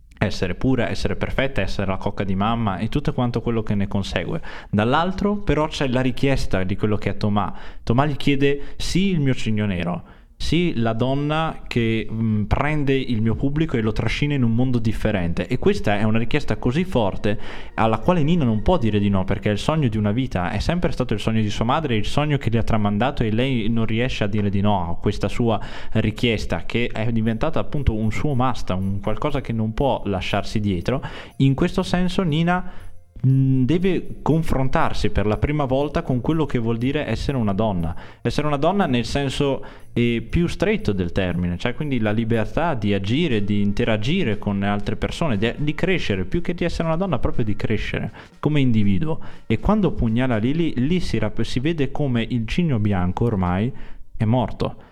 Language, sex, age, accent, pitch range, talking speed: Italian, male, 20-39, native, 105-140 Hz, 195 wpm